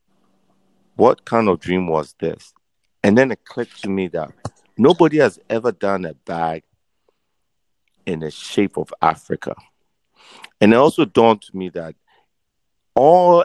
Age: 50-69